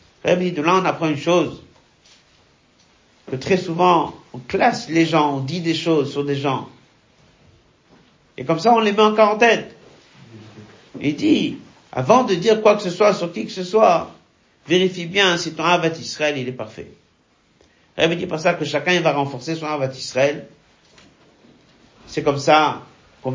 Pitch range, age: 130-155 Hz, 50-69